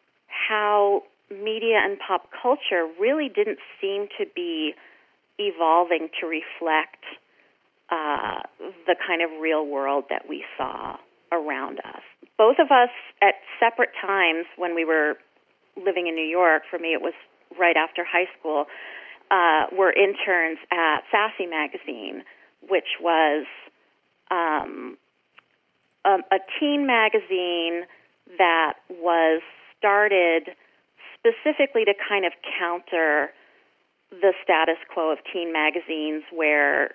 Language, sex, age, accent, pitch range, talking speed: English, female, 30-49, American, 155-200 Hz, 115 wpm